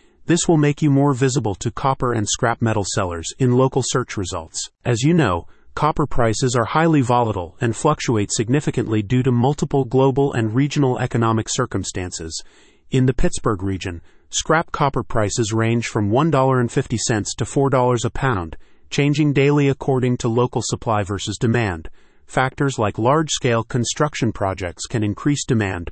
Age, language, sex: 40-59, English, male